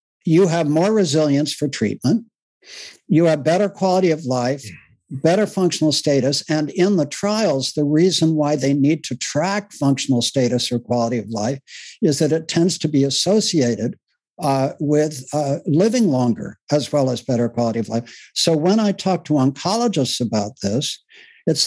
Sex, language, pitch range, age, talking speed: male, English, 135-180 Hz, 60-79, 165 wpm